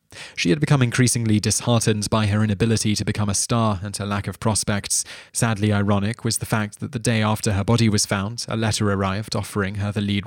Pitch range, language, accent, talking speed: 100-120 Hz, English, British, 215 wpm